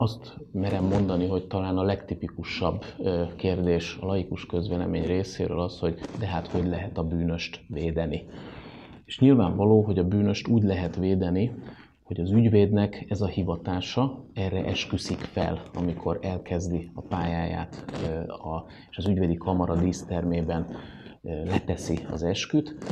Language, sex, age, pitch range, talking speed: Hungarian, male, 30-49, 85-100 Hz, 130 wpm